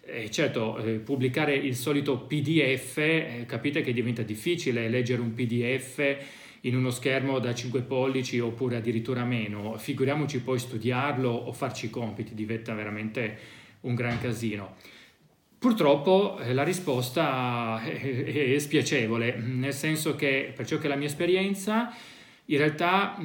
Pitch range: 120-155 Hz